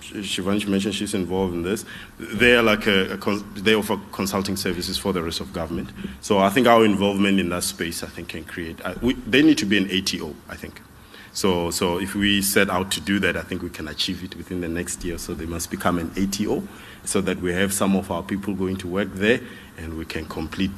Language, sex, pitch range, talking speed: English, male, 90-110 Hz, 245 wpm